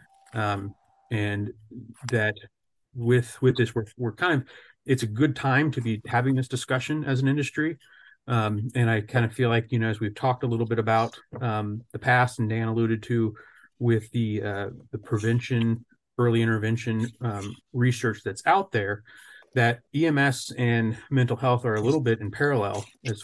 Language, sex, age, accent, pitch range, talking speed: English, male, 30-49, American, 110-125 Hz, 180 wpm